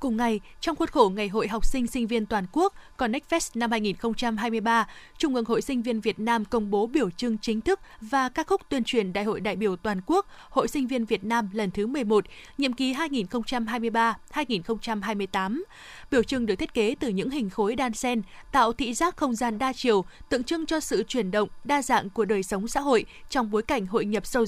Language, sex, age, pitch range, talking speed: Vietnamese, female, 20-39, 220-275 Hz, 215 wpm